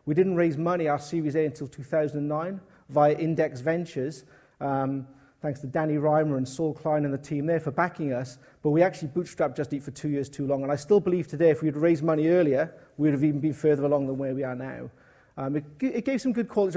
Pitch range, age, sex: 145-175 Hz, 40-59, male